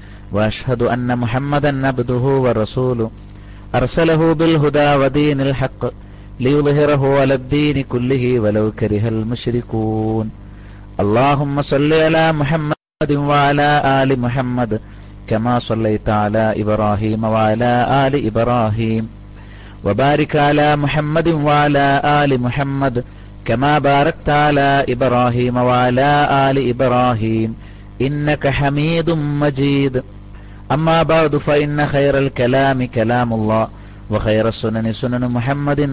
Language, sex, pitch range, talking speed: Malayalam, male, 110-145 Hz, 95 wpm